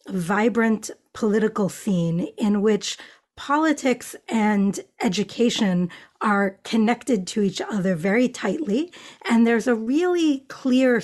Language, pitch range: English, 195-250 Hz